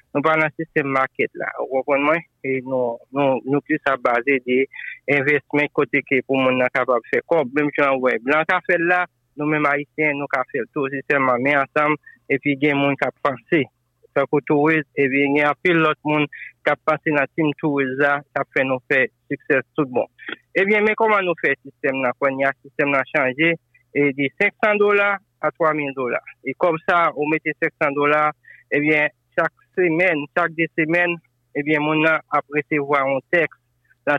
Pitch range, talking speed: 140-160 Hz, 195 wpm